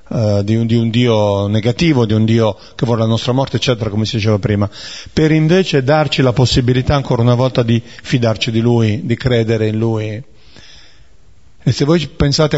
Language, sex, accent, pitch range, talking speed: Italian, male, native, 115-140 Hz, 180 wpm